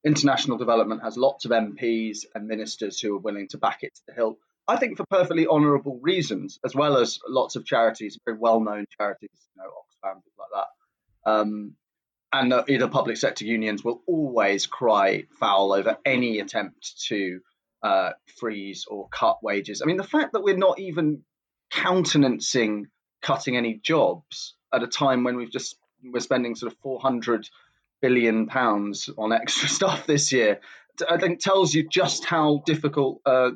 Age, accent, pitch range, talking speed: 20-39, British, 110-140 Hz, 170 wpm